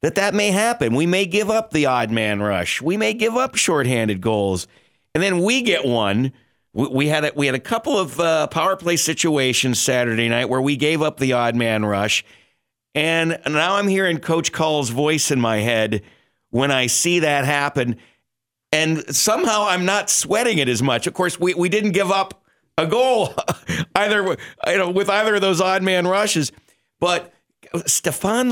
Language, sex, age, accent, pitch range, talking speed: English, male, 50-69, American, 125-175 Hz, 180 wpm